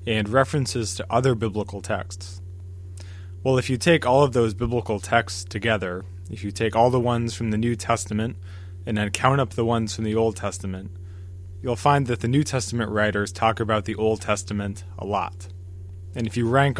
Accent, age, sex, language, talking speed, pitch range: American, 20-39, male, English, 195 wpm, 90-120 Hz